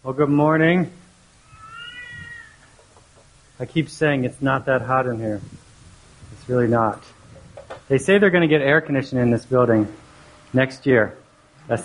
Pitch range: 135-170 Hz